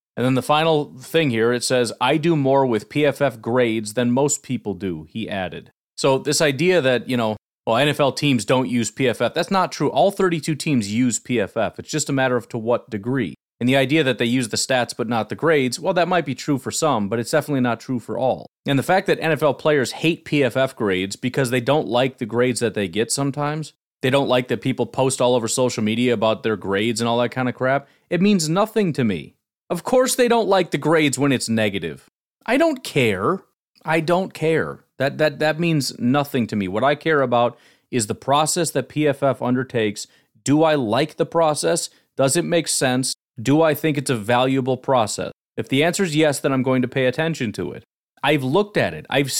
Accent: American